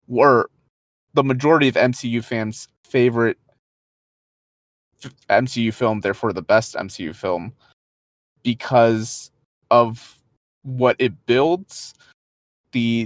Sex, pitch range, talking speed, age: male, 110-135 Hz, 95 wpm, 20-39